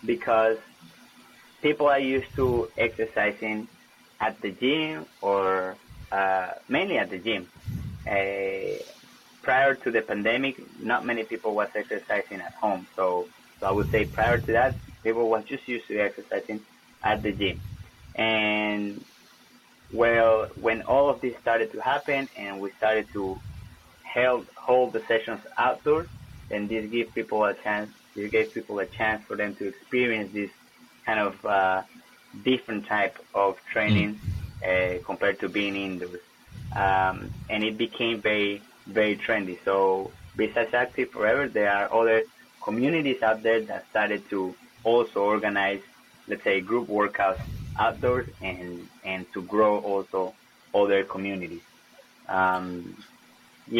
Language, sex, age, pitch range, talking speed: English, male, 20-39, 95-115 Hz, 140 wpm